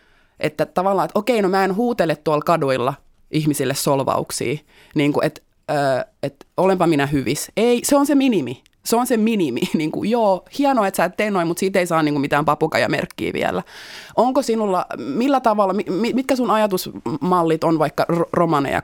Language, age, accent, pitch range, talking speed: Finnish, 20-39, native, 145-190 Hz, 190 wpm